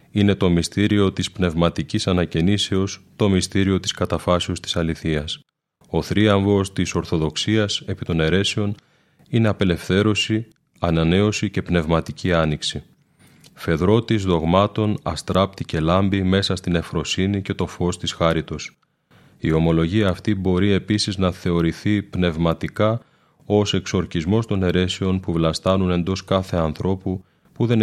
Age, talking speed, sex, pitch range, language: 30-49, 120 wpm, male, 85-105 Hz, Greek